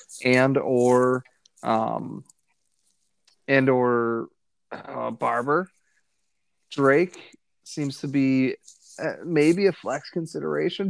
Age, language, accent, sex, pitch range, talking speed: 30-49, English, American, male, 125-145 Hz, 85 wpm